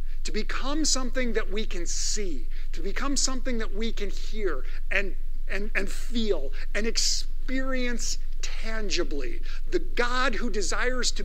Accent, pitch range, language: American, 190-265 Hz, English